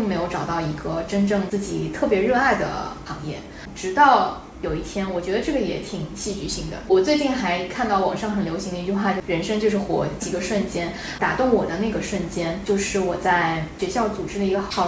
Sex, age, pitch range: female, 10-29, 185-215 Hz